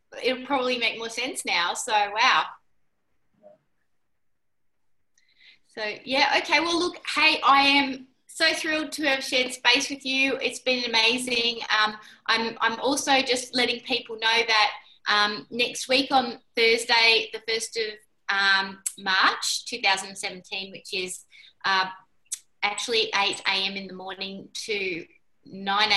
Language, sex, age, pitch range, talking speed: English, female, 20-39, 195-250 Hz, 130 wpm